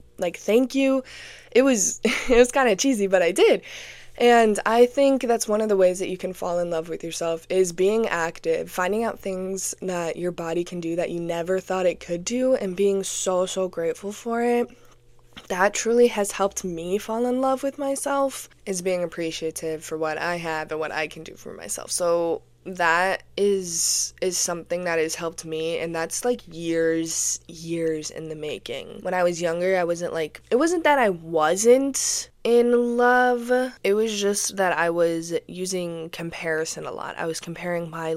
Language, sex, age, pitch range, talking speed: English, female, 20-39, 165-210 Hz, 195 wpm